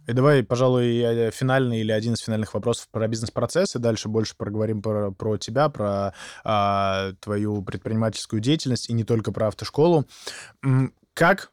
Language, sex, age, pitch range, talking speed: Russian, male, 20-39, 110-140 Hz, 155 wpm